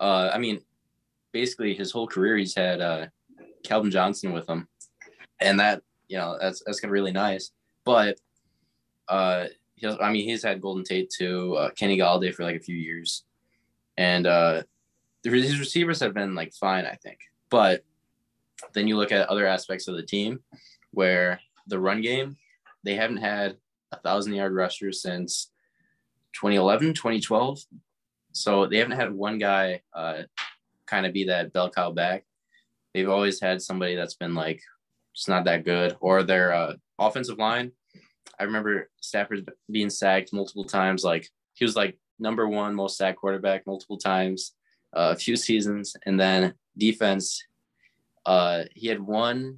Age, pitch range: 20-39, 90-105 Hz